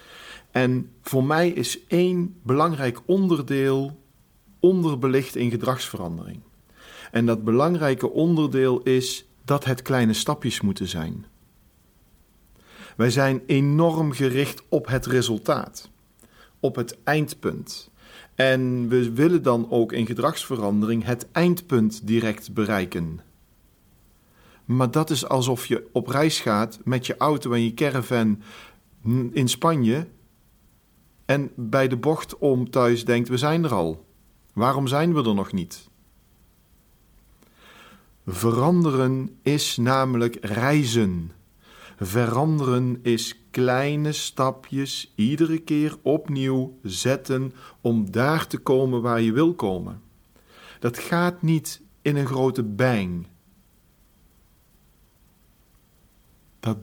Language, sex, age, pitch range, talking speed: Dutch, male, 50-69, 115-145 Hz, 110 wpm